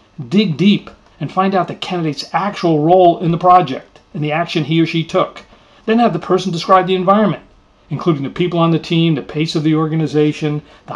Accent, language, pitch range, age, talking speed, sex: American, English, 140-170 Hz, 40-59, 210 wpm, male